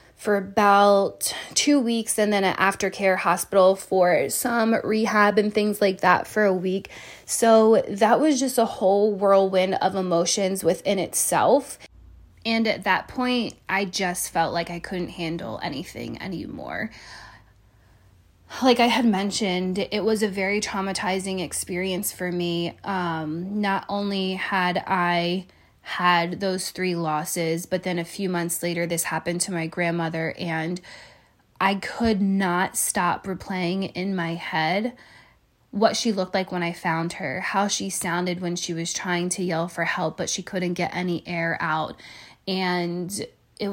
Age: 20-39